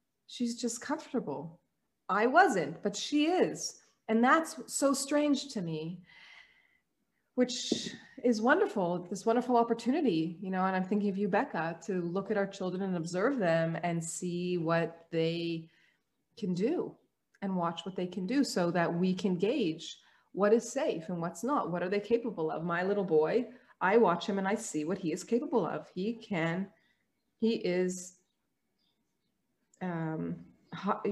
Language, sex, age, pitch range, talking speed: English, female, 30-49, 175-235 Hz, 160 wpm